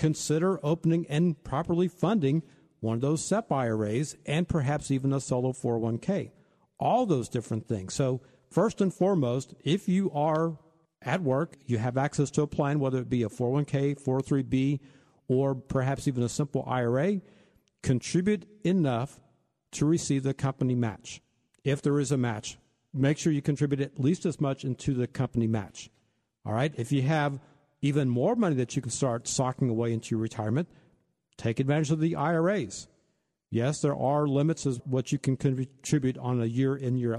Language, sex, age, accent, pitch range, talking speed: English, male, 50-69, American, 125-160 Hz, 170 wpm